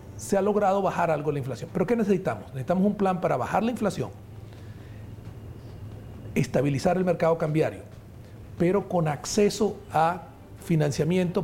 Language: Spanish